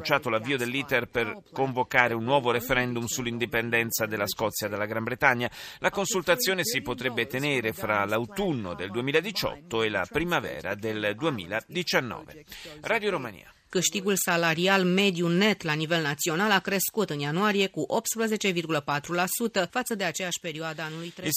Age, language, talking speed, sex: 40-59, Italian, 90 wpm, male